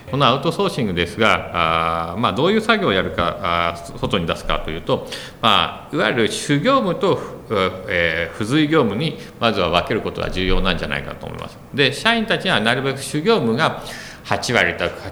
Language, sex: Japanese, male